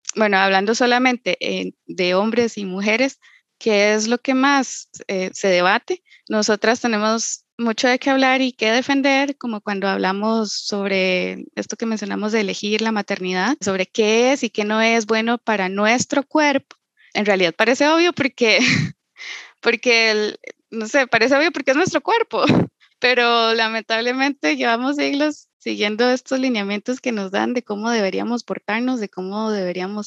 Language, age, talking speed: Spanish, 20-39, 155 wpm